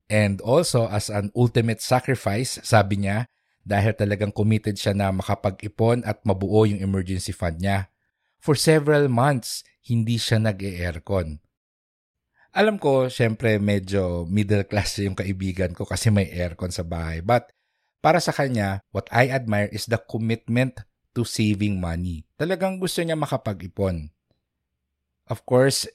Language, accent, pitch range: English, Filipino, 95-120 Hz